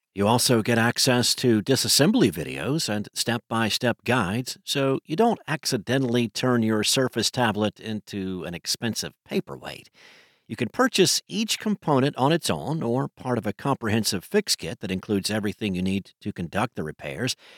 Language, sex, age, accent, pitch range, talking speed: English, male, 50-69, American, 110-145 Hz, 155 wpm